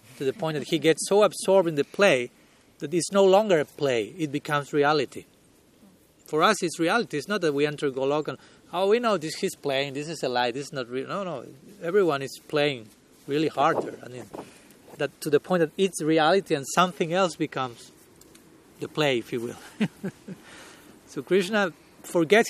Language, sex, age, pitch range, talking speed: English, male, 30-49, 145-185 Hz, 195 wpm